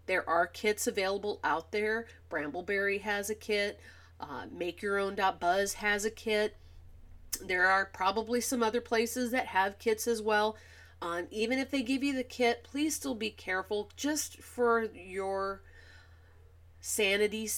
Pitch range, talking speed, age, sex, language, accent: 180-225 Hz, 145 wpm, 30-49, female, English, American